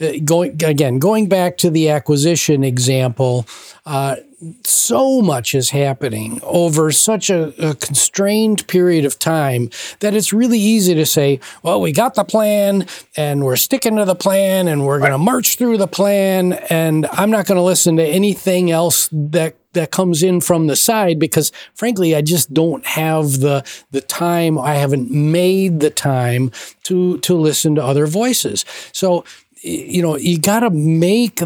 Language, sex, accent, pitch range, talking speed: English, male, American, 145-180 Hz, 170 wpm